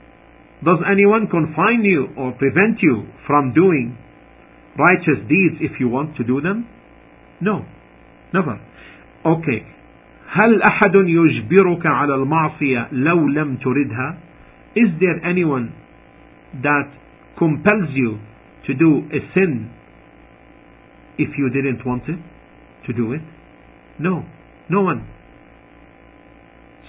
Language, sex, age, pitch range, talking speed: English, male, 50-69, 135-190 Hz, 110 wpm